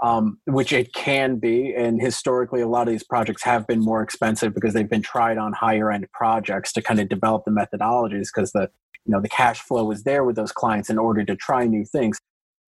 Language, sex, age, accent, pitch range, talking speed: English, male, 30-49, American, 115-140 Hz, 220 wpm